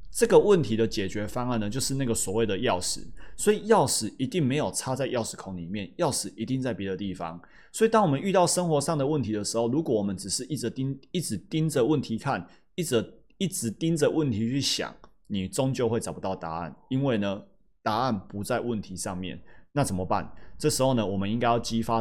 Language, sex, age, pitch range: Chinese, male, 30-49, 100-150 Hz